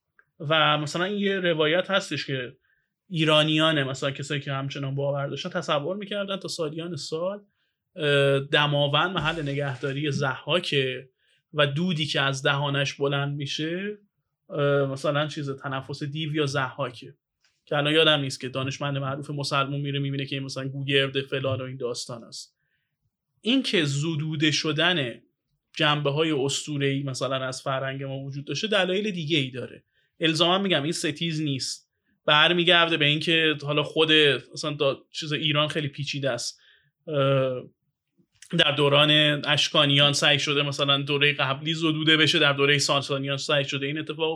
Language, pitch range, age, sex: Persian, 140-160 Hz, 30-49, male